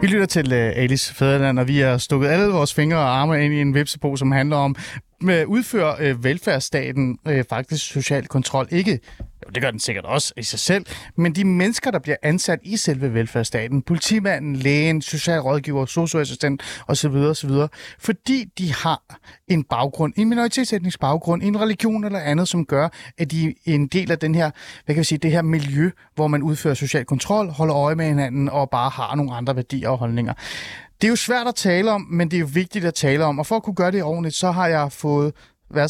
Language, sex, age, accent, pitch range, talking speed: Danish, male, 30-49, native, 135-180 Hz, 220 wpm